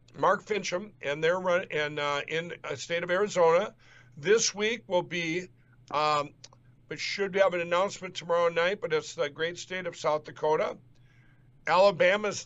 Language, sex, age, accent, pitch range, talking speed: English, male, 60-79, American, 150-210 Hz, 150 wpm